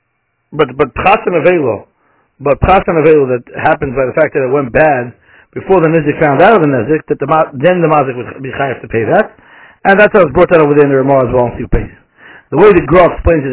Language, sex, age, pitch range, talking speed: English, male, 60-79, 135-165 Hz, 255 wpm